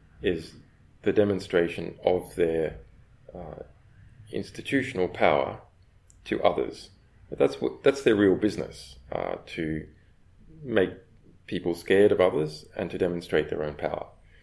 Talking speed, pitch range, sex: 125 wpm, 80-95 Hz, male